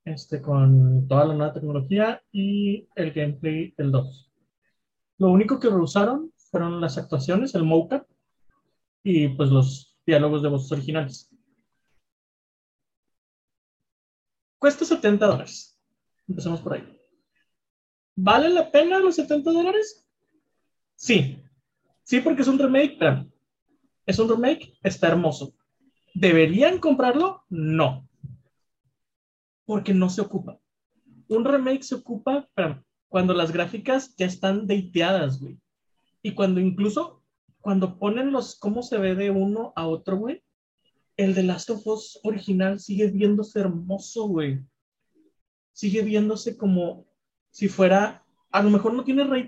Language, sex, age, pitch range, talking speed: Spanish, male, 30-49, 165-240 Hz, 125 wpm